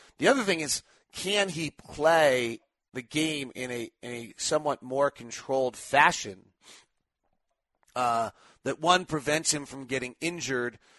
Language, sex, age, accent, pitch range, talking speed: English, male, 40-59, American, 115-150 Hz, 135 wpm